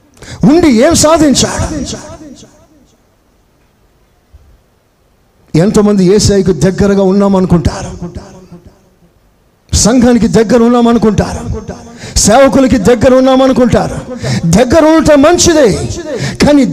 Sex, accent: male, native